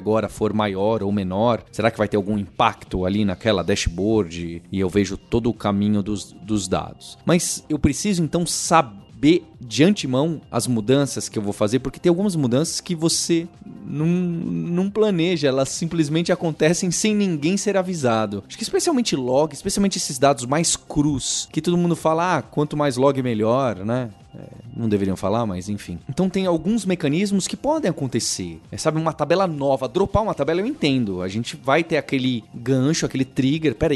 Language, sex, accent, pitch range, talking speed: Portuguese, male, Brazilian, 115-175 Hz, 180 wpm